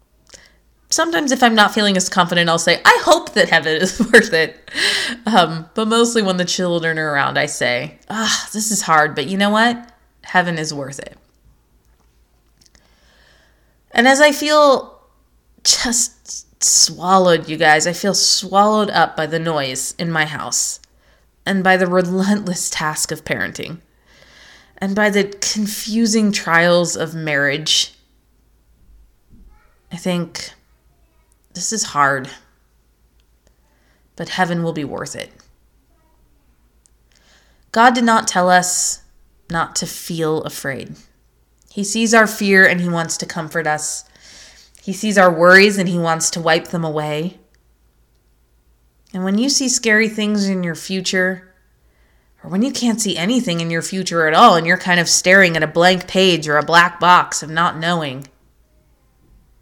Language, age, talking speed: English, 20-39, 150 wpm